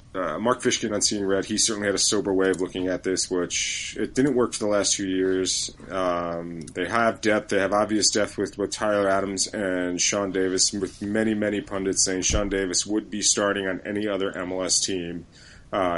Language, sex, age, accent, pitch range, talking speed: English, male, 30-49, American, 90-115 Hz, 210 wpm